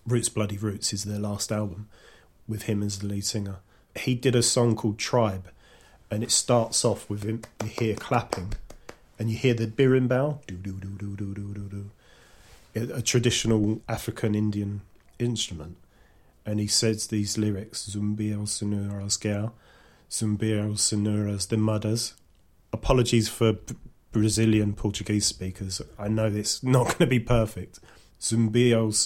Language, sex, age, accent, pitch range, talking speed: English, male, 30-49, British, 105-115 Hz, 135 wpm